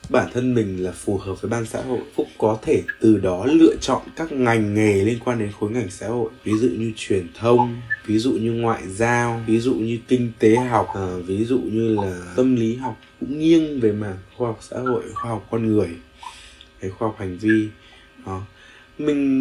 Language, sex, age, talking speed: Vietnamese, male, 20-39, 215 wpm